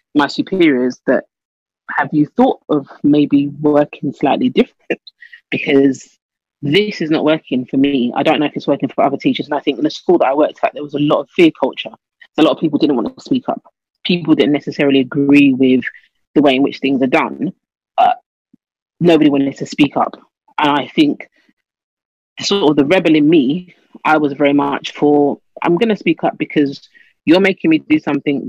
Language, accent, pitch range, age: English, British, 140-205 Hz, 30-49